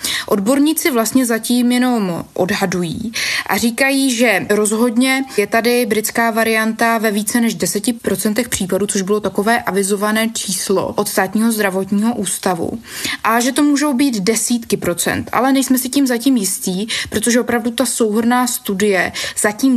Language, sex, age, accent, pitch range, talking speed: Czech, female, 20-39, native, 195-240 Hz, 140 wpm